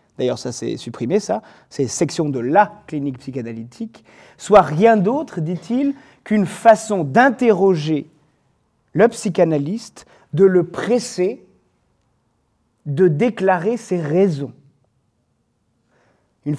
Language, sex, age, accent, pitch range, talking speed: French, male, 30-49, French, 145-190 Hz, 105 wpm